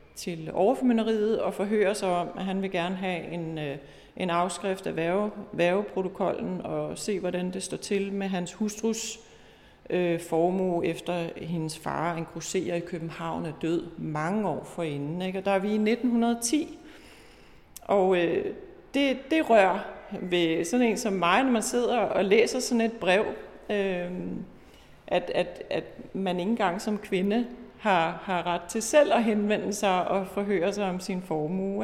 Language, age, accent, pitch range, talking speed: Danish, 40-59, native, 180-225 Hz, 165 wpm